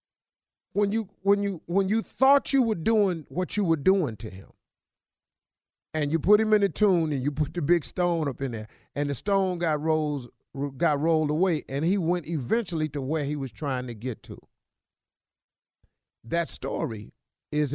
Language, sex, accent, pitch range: English, male, American, 130-185 Hz